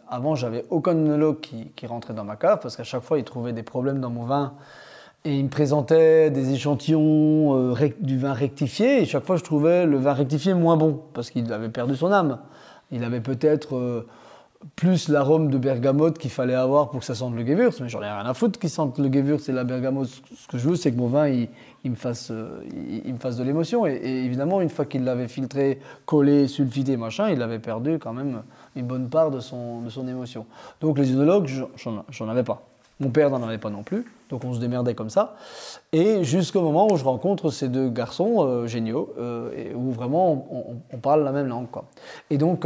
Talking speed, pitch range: 235 wpm, 125-155 Hz